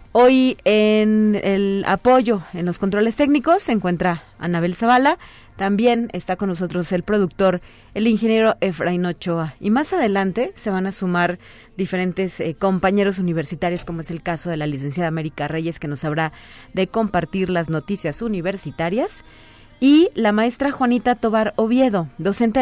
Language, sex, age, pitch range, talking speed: Spanish, female, 30-49, 175-225 Hz, 150 wpm